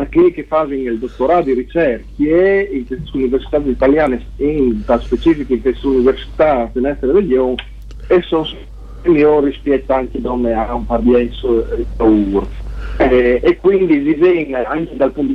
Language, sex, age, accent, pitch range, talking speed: Italian, male, 50-69, native, 120-150 Hz, 130 wpm